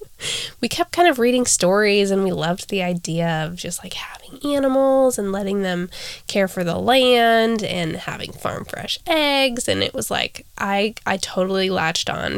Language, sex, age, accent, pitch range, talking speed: English, female, 10-29, American, 180-245 Hz, 180 wpm